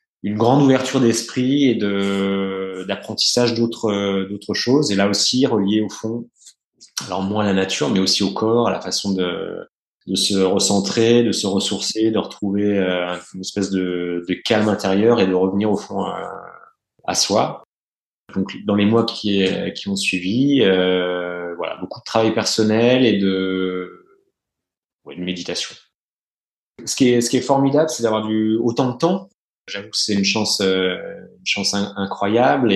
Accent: French